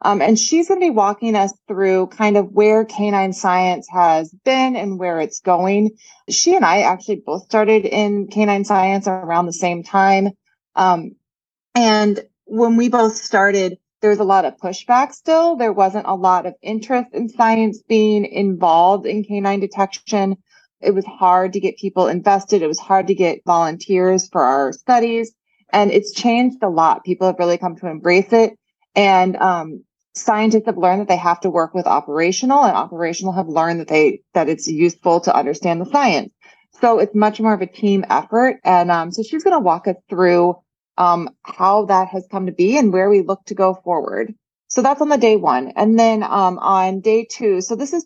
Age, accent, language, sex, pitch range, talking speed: 20-39, American, English, female, 180-220 Hz, 195 wpm